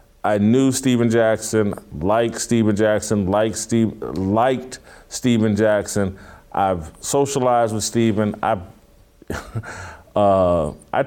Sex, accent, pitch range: male, American, 95-115 Hz